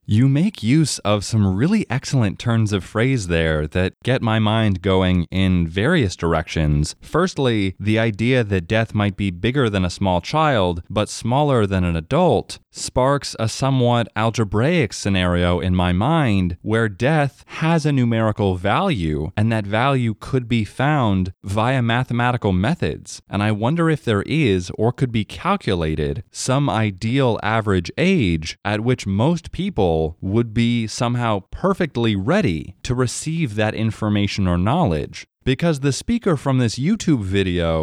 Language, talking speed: English, 150 wpm